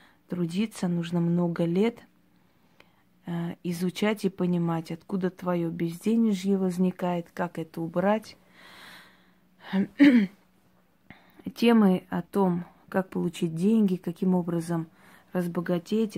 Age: 20-39